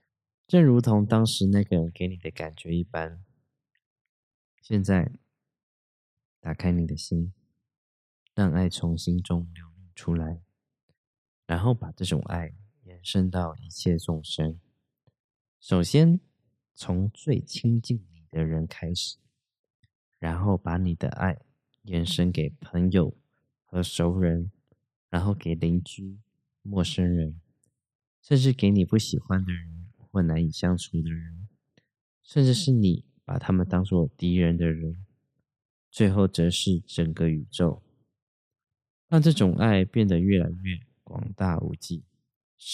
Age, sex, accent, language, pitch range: 20-39, male, native, Chinese, 85-120 Hz